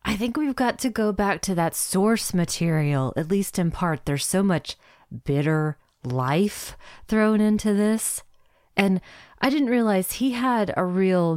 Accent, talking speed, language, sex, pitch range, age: American, 165 wpm, English, female, 155-205 Hz, 30-49